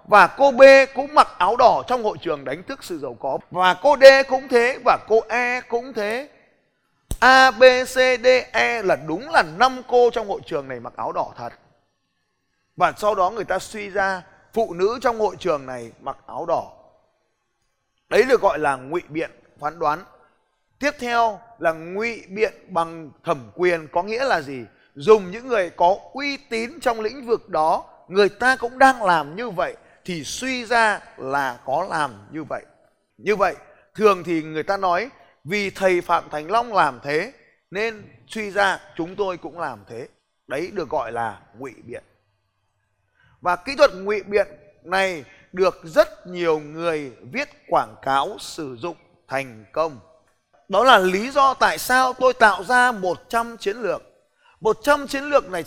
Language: Vietnamese